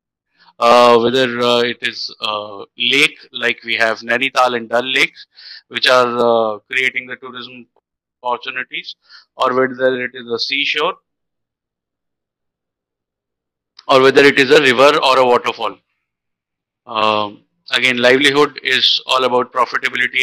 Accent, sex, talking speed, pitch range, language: native, male, 130 wpm, 120-145 Hz, Hindi